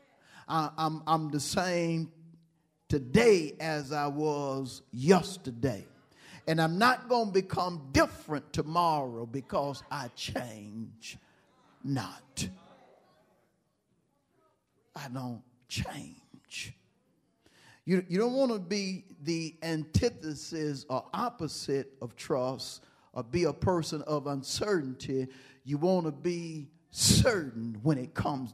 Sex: male